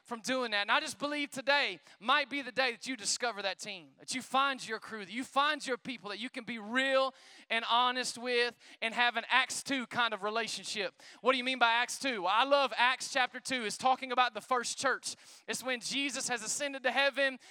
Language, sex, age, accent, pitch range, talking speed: English, male, 20-39, American, 230-285 Hz, 235 wpm